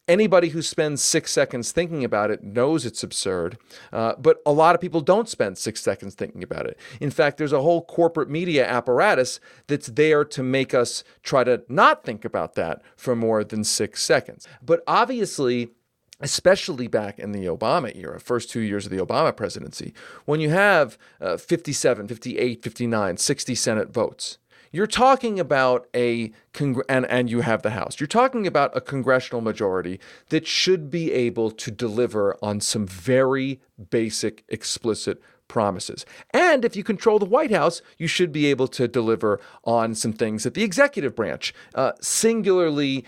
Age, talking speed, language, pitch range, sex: 40-59, 170 wpm, English, 120-175 Hz, male